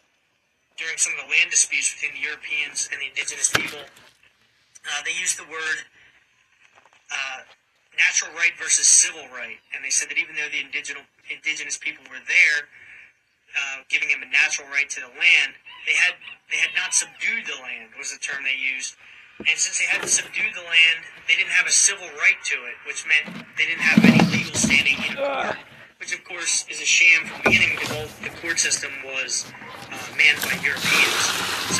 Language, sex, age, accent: English, male, 30-49, American